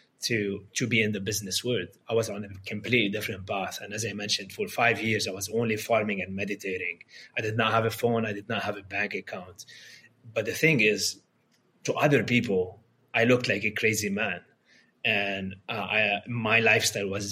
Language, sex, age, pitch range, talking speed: English, male, 20-39, 100-120 Hz, 205 wpm